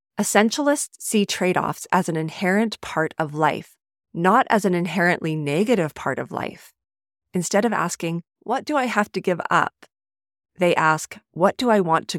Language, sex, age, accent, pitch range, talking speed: English, female, 30-49, American, 165-210 Hz, 165 wpm